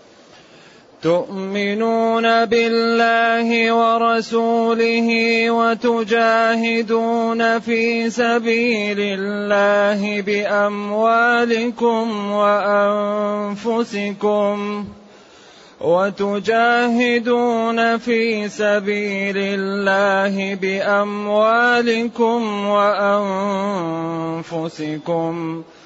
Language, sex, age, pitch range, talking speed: Arabic, male, 30-49, 195-230 Hz, 35 wpm